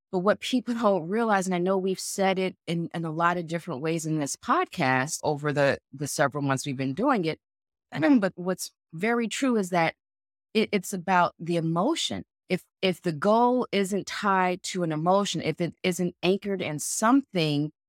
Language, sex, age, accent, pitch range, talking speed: English, female, 30-49, American, 170-220 Hz, 190 wpm